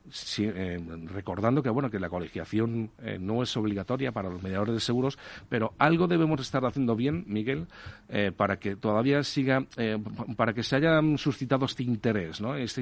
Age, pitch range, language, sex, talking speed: 40-59, 100-125 Hz, Spanish, male, 185 wpm